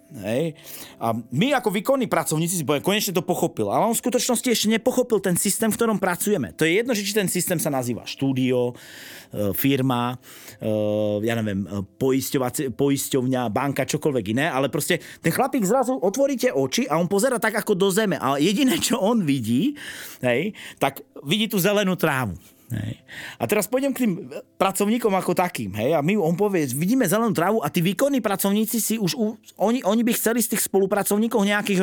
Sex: male